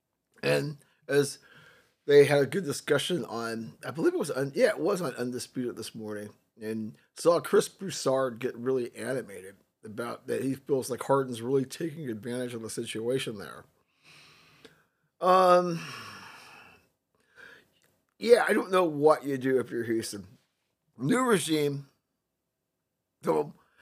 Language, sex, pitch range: English, male, 125-150 Hz